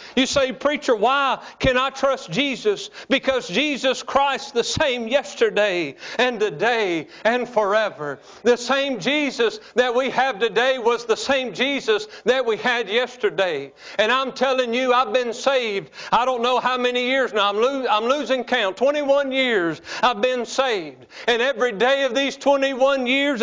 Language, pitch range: English, 225-265 Hz